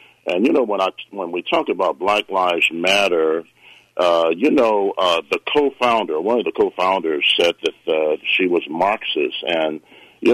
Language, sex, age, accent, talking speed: English, male, 50-69, American, 175 wpm